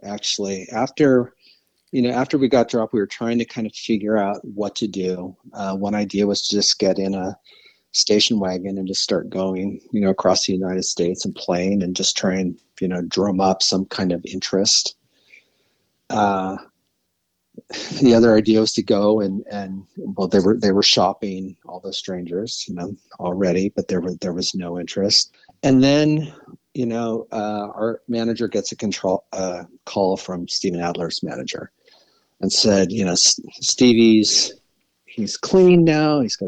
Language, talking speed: English, 180 wpm